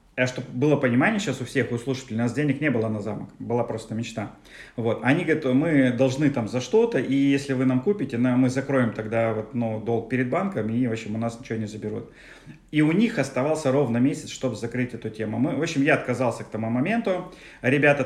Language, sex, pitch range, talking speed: Russian, male, 125-155 Hz, 225 wpm